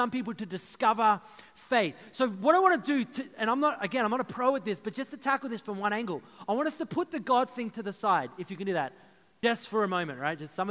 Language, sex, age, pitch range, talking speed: English, male, 30-49, 190-250 Hz, 295 wpm